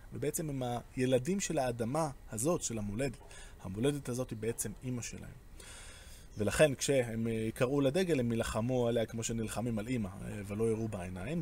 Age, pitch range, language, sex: 20-39, 110-160 Hz, Hebrew, male